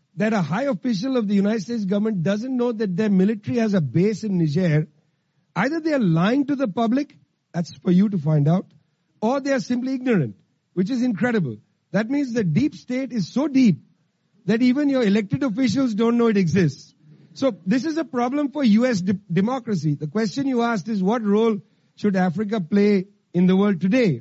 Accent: Indian